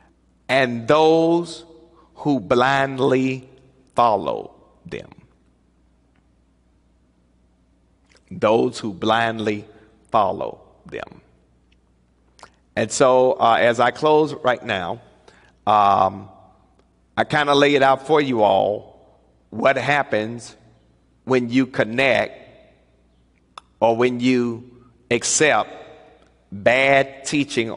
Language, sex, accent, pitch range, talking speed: English, male, American, 105-145 Hz, 85 wpm